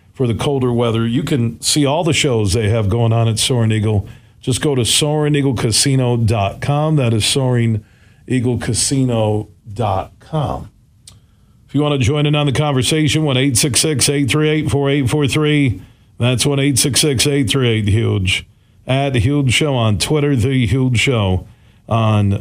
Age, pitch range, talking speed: 40-59, 110-140 Hz, 125 wpm